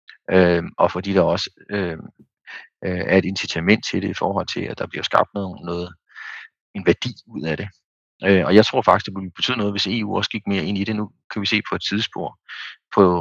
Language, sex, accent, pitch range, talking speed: Danish, male, native, 90-105 Hz, 230 wpm